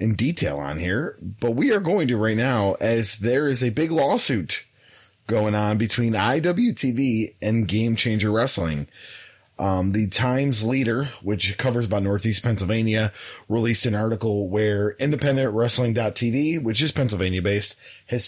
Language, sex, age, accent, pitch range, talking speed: English, male, 30-49, American, 105-125 Hz, 145 wpm